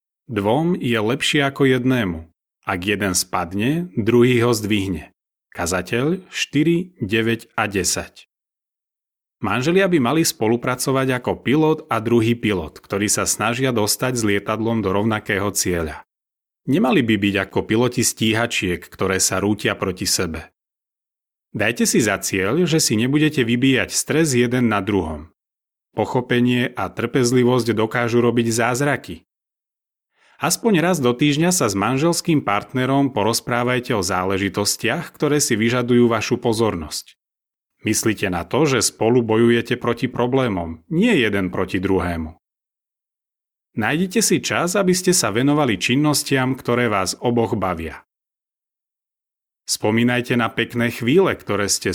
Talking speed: 125 wpm